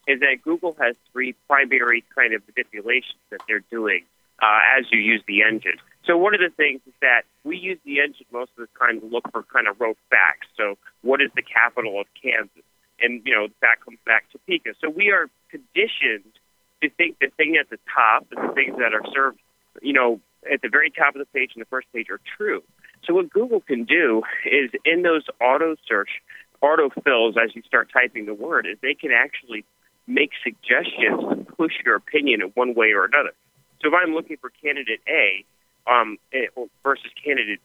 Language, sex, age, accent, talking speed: English, male, 40-59, American, 205 wpm